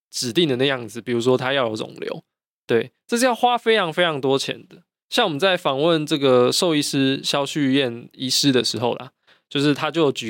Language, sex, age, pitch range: Chinese, male, 20-39, 125-175 Hz